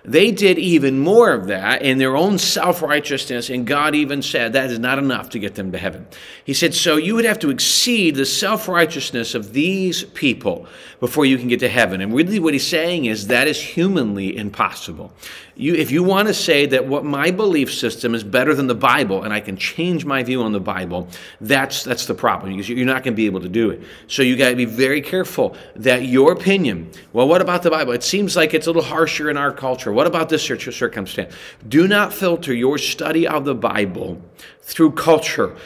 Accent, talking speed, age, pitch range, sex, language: American, 220 wpm, 40-59, 120-165 Hz, male, English